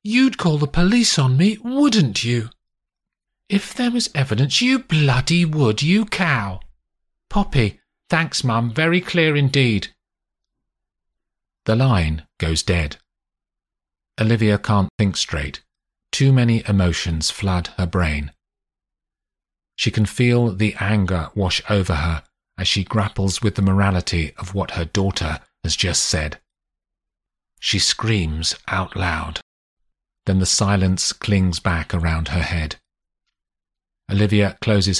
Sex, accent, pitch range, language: male, British, 80-110 Hz, English